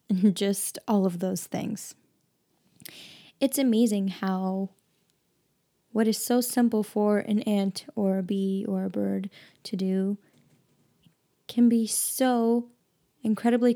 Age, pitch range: 10-29, 195-230 Hz